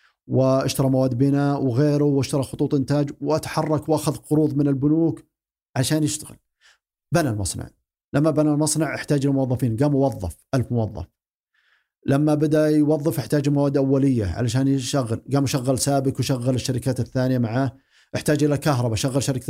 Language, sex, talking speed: Arabic, male, 140 wpm